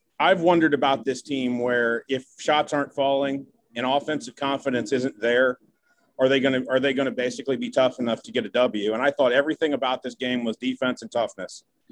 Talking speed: 210 wpm